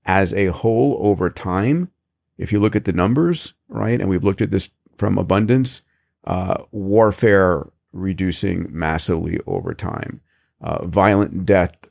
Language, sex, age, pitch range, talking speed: English, male, 50-69, 90-110 Hz, 140 wpm